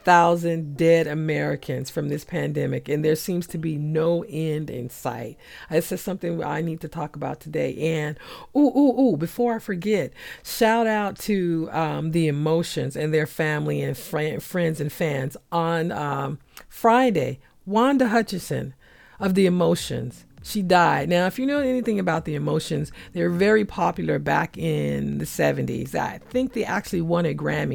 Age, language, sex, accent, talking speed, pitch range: 50-69, English, female, American, 165 wpm, 155-220 Hz